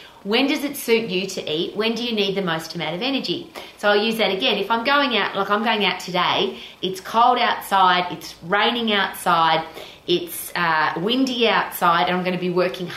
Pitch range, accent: 180-220 Hz, Australian